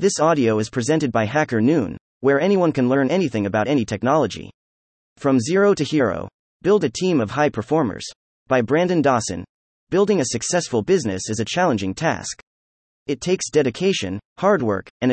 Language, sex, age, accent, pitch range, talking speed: English, male, 30-49, American, 110-160 Hz, 165 wpm